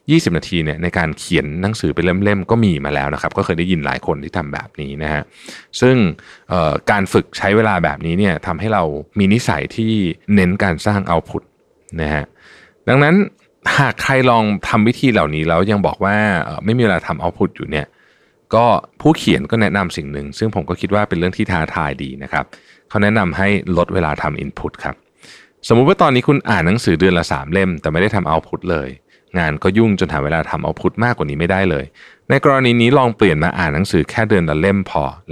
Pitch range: 85-115 Hz